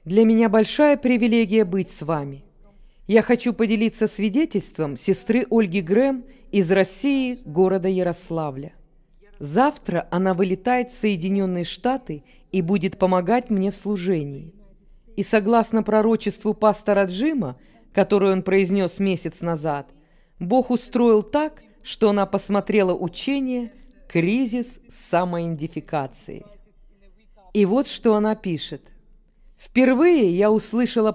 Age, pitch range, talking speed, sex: 40-59, 170-225 Hz, 110 wpm, female